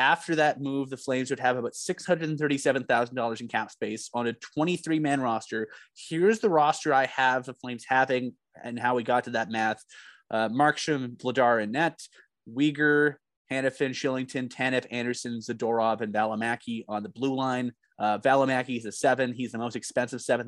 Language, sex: English, male